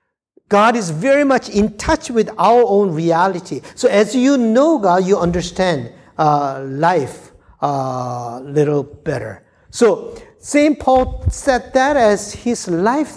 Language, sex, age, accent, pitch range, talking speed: English, male, 50-69, Japanese, 135-215 Hz, 135 wpm